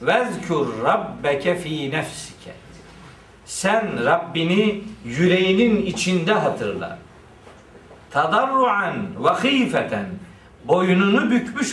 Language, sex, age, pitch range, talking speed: Turkish, male, 50-69, 170-220 Hz, 75 wpm